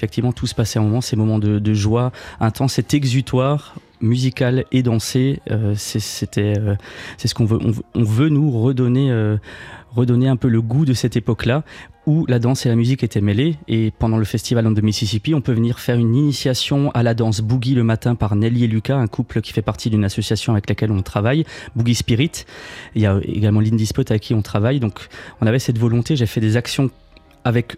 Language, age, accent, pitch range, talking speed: French, 20-39, French, 110-125 Hz, 220 wpm